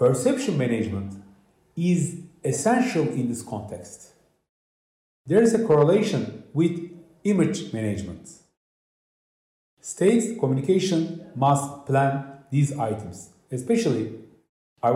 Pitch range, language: 115-160 Hz, English